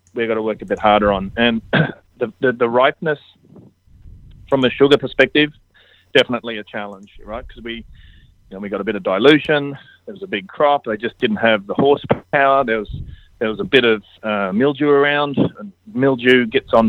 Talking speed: 200 wpm